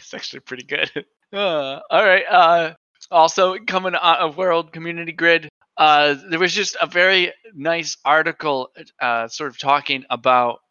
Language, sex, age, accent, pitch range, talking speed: English, male, 20-39, American, 125-150 Hz, 155 wpm